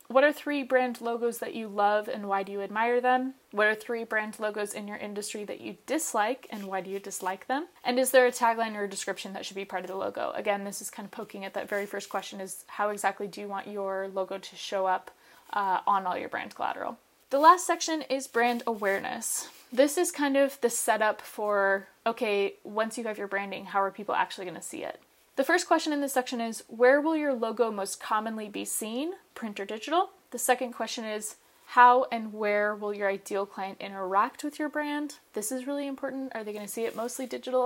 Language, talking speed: English, 235 wpm